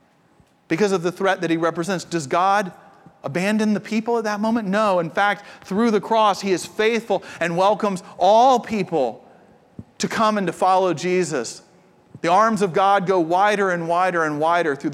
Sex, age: male, 40-59